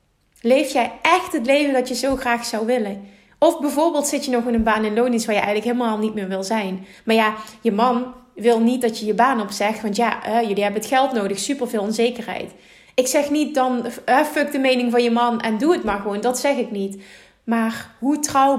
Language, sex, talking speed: Dutch, female, 235 wpm